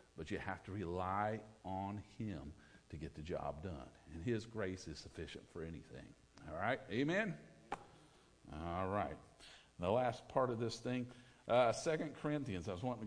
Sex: male